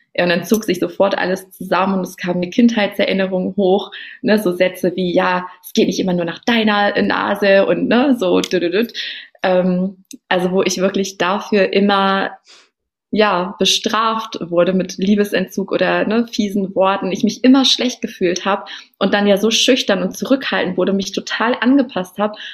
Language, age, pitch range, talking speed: German, 20-39, 180-215 Hz, 165 wpm